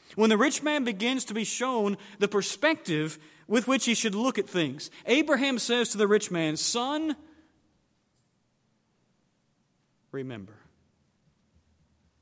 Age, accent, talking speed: 40-59, American, 125 wpm